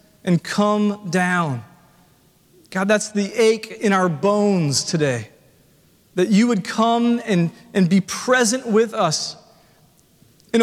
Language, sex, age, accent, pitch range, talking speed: English, male, 30-49, American, 190-225 Hz, 125 wpm